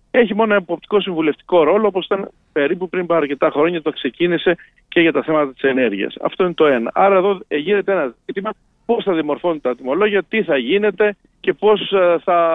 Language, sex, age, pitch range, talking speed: Greek, male, 50-69, 160-210 Hz, 200 wpm